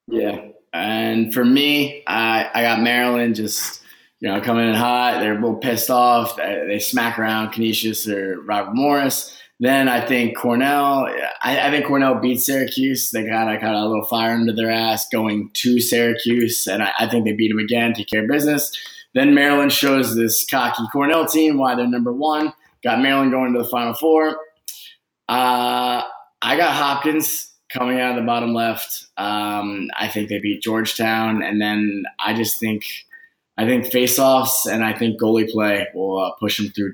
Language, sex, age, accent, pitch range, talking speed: English, male, 20-39, American, 110-130 Hz, 185 wpm